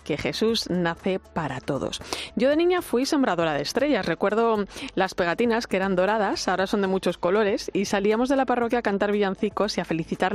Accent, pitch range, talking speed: Spanish, 170-230 Hz, 195 wpm